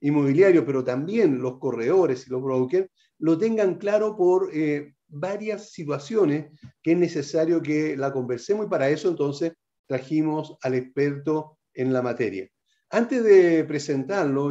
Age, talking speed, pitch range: 40-59, 140 wpm, 140-190 Hz